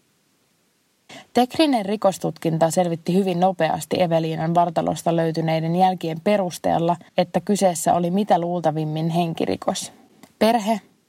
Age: 20-39